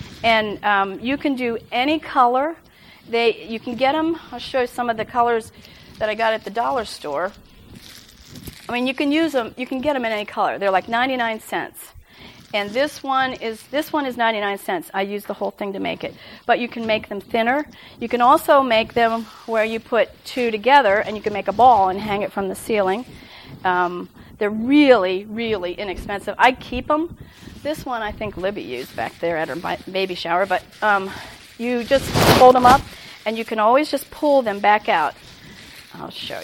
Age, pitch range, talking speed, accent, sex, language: 40-59, 205-260 Hz, 205 wpm, American, female, English